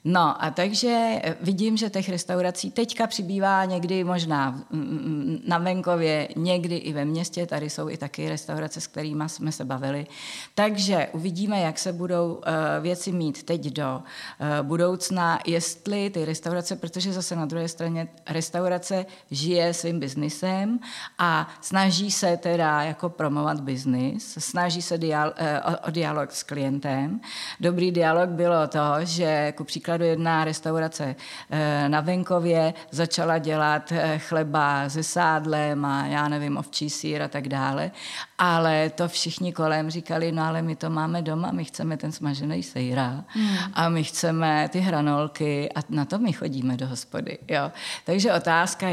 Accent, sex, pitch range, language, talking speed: native, female, 150-175 Hz, Czech, 145 wpm